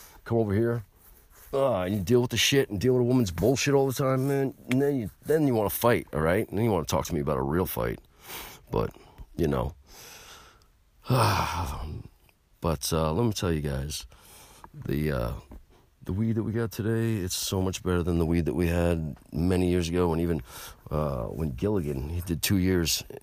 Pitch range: 75-95 Hz